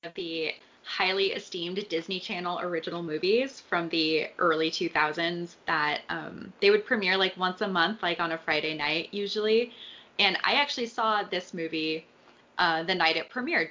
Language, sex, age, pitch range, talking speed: English, female, 20-39, 165-210 Hz, 165 wpm